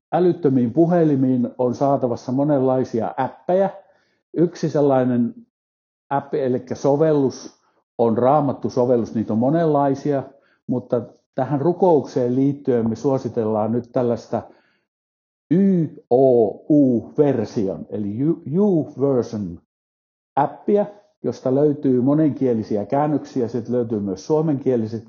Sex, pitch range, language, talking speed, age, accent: male, 115-145 Hz, Finnish, 85 wpm, 60-79, native